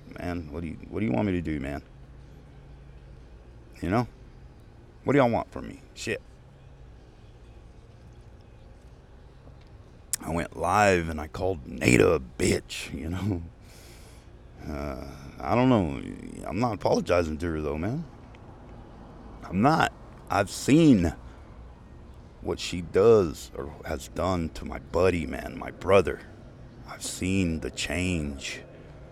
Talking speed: 130 wpm